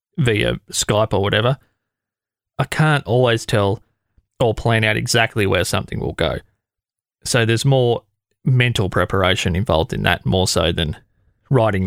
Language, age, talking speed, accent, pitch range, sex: English, 20-39, 140 wpm, Australian, 105-125 Hz, male